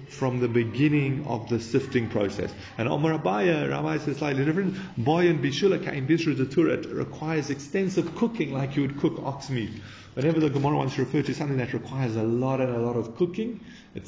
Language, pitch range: English, 120-160 Hz